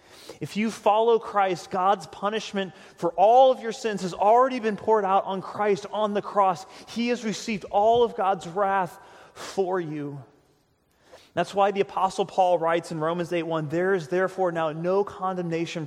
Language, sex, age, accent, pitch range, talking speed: English, male, 30-49, American, 150-190 Hz, 170 wpm